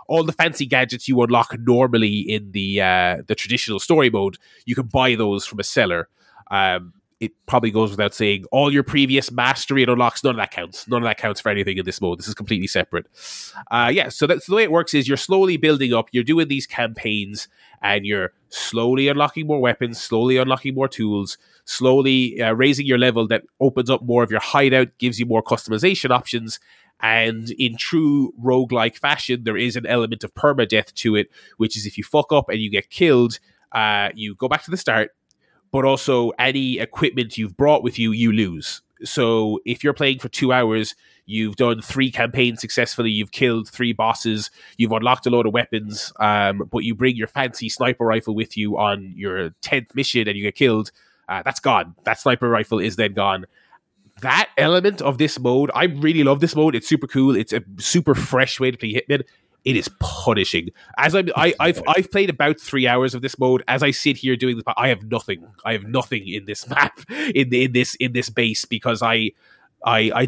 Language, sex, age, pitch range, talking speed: English, male, 20-39, 110-135 Hz, 210 wpm